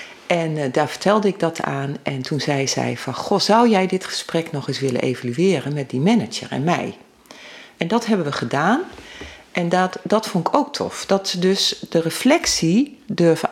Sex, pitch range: female, 140-195 Hz